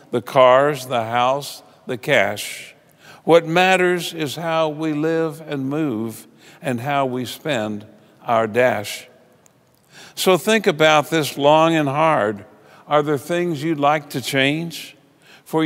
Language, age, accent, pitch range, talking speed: English, 50-69, American, 130-165 Hz, 135 wpm